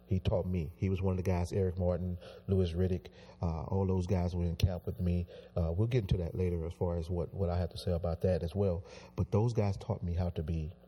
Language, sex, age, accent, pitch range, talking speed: English, male, 30-49, American, 90-100 Hz, 270 wpm